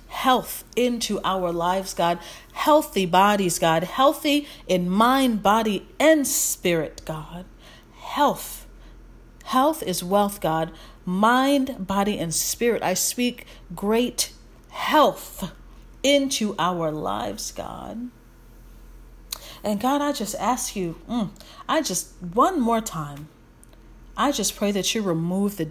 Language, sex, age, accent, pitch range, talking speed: English, female, 40-59, American, 180-240 Hz, 115 wpm